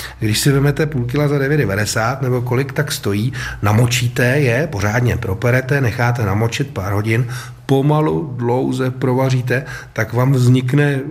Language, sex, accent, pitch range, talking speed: Czech, male, native, 110-130 Hz, 135 wpm